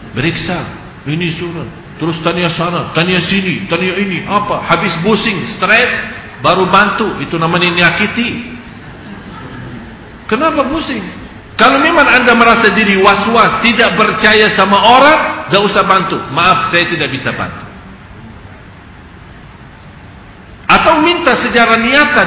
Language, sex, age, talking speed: English, male, 50-69, 115 wpm